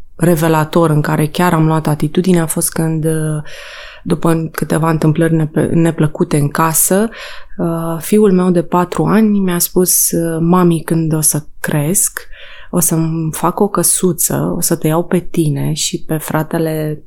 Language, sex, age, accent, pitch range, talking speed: Romanian, female, 20-39, native, 155-180 Hz, 150 wpm